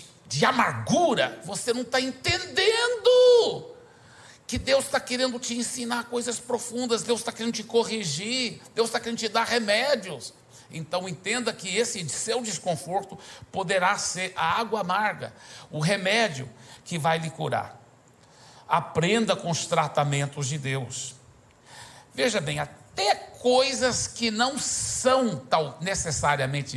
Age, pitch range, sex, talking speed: 60-79, 130-210 Hz, male, 125 wpm